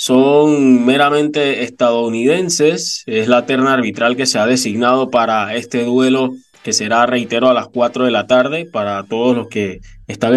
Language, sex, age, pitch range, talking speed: Spanish, male, 20-39, 115-135 Hz, 160 wpm